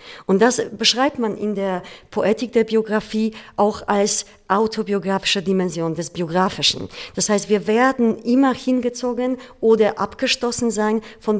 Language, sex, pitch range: German, female, 185-225 Hz